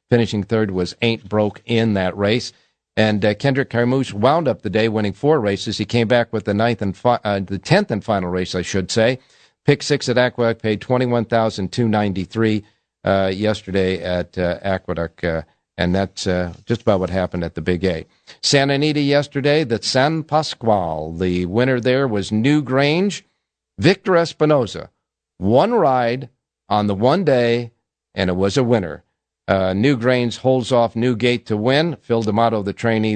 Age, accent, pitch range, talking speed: 50-69, American, 100-125 Hz, 170 wpm